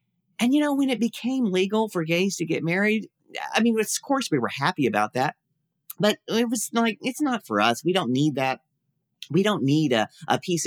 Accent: American